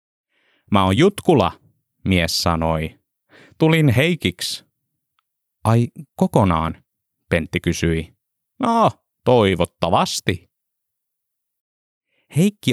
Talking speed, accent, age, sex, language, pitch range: 70 wpm, native, 30-49, male, Finnish, 90-110 Hz